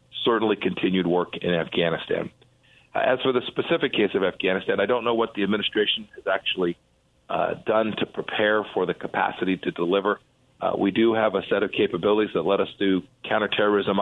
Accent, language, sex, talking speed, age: American, English, male, 180 wpm, 40-59